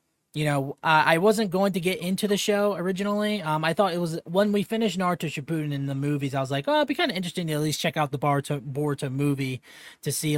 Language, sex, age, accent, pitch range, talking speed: English, male, 20-39, American, 140-165 Hz, 260 wpm